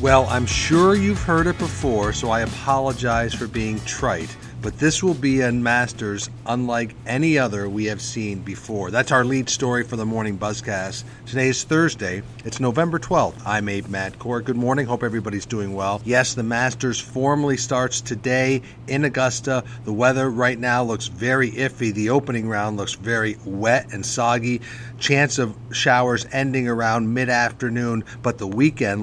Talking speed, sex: 165 wpm, male